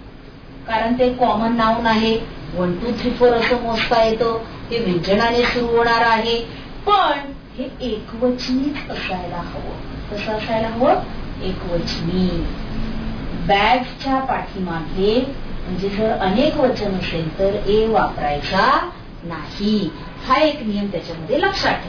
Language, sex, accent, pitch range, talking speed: Marathi, female, native, 185-285 Hz, 45 wpm